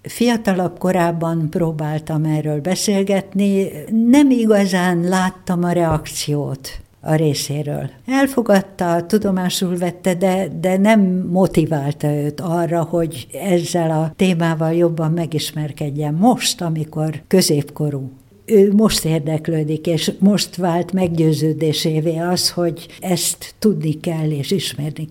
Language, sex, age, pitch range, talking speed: Hungarian, female, 60-79, 155-190 Hz, 105 wpm